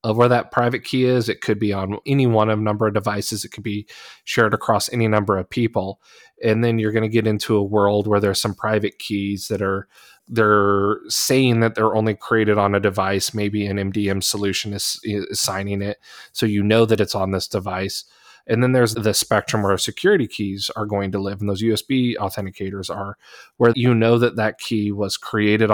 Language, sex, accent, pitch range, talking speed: English, male, American, 100-120 Hz, 210 wpm